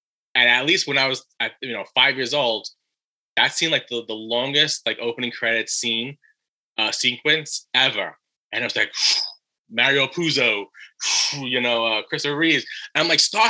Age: 20-39